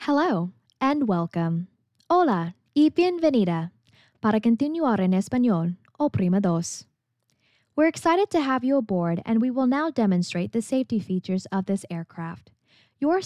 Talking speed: 140 wpm